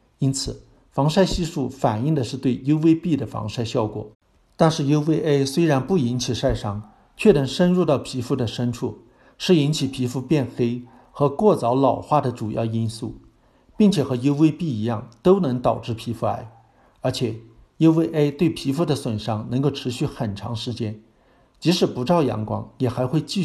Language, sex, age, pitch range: Chinese, male, 50-69, 115-150 Hz